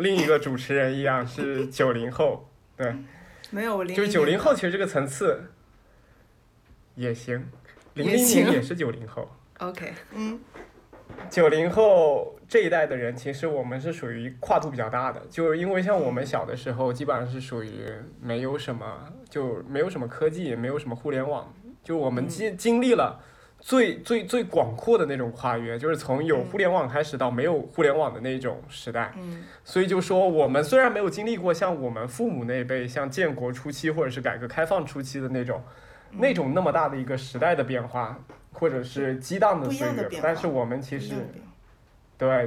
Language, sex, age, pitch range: Chinese, male, 20-39, 125-180 Hz